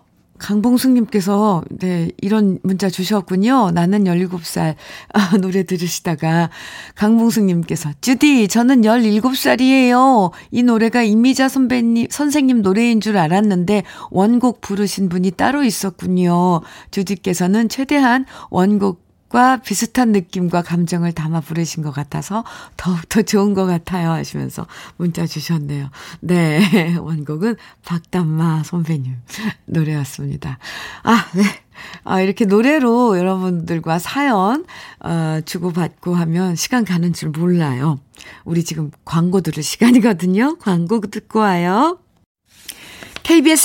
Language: Korean